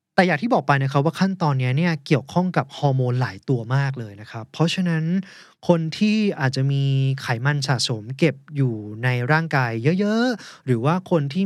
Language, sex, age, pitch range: Thai, male, 20-39, 130-175 Hz